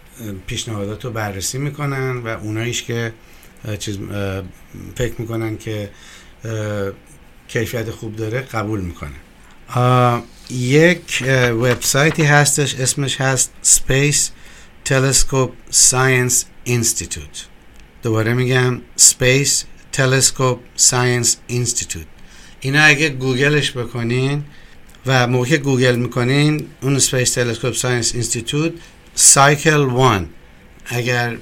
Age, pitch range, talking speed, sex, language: 60-79, 110-130 Hz, 90 wpm, male, Persian